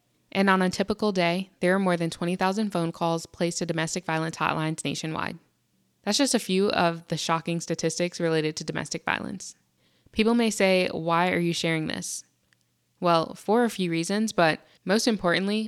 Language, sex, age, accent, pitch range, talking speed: English, female, 10-29, American, 165-185 Hz, 175 wpm